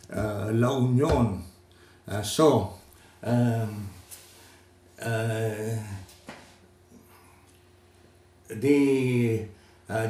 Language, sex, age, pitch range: English, male, 60-79, 95-130 Hz